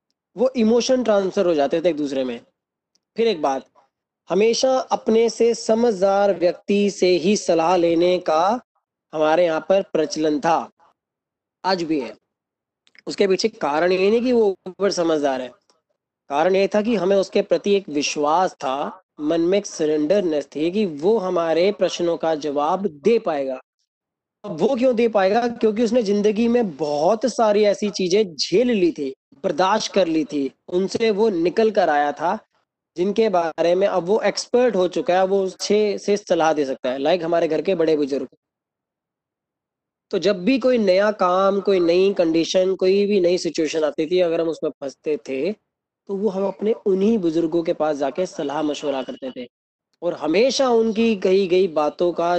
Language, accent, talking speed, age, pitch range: Hindi, native, 175 wpm, 20-39, 160-205 Hz